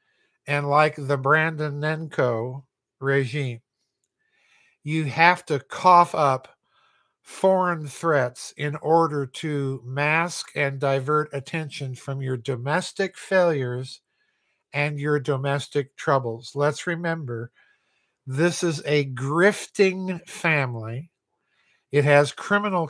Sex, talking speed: male, 100 wpm